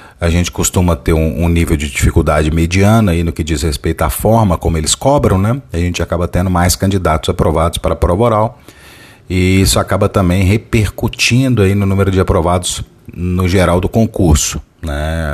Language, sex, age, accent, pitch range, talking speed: Portuguese, male, 40-59, Brazilian, 85-105 Hz, 175 wpm